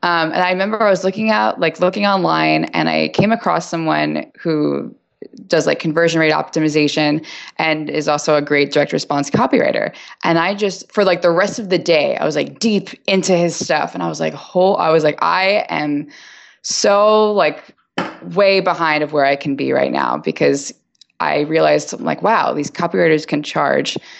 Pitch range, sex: 145-185 Hz, female